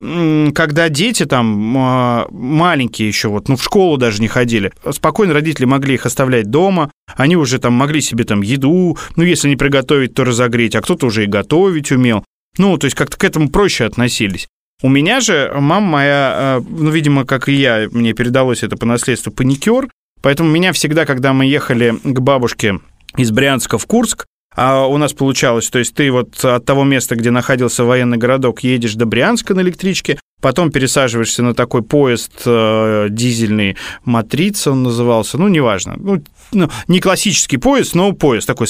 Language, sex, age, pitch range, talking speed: Russian, male, 20-39, 120-165 Hz, 170 wpm